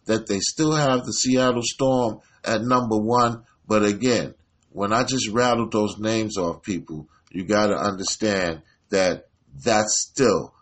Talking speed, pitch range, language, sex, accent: 155 wpm, 95-120 Hz, English, male, American